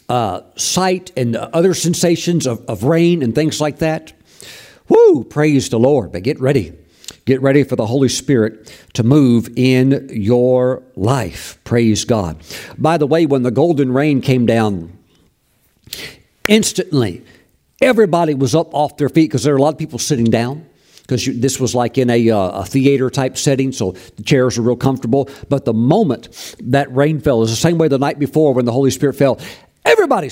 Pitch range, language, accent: 125-155 Hz, English, American